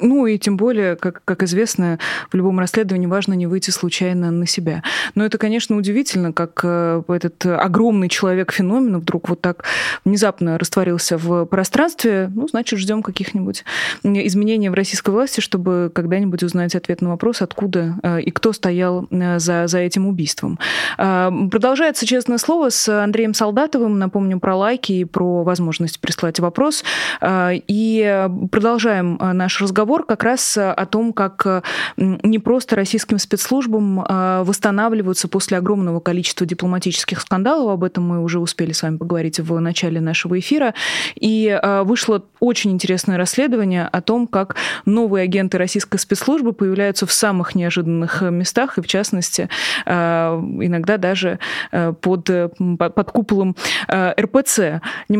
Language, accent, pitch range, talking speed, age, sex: Russian, native, 180-215 Hz, 135 wpm, 20-39, female